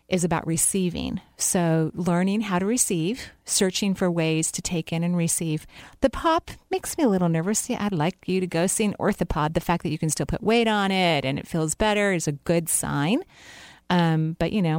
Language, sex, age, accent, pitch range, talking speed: English, female, 40-59, American, 155-190 Hz, 215 wpm